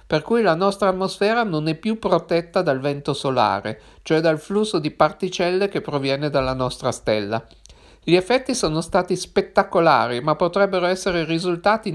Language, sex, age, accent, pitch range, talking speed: Italian, male, 50-69, native, 145-185 Hz, 155 wpm